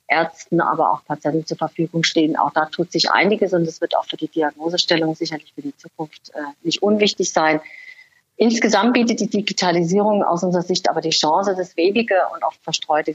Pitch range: 160-205 Hz